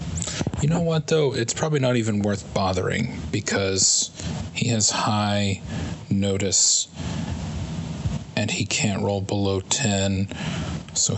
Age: 30-49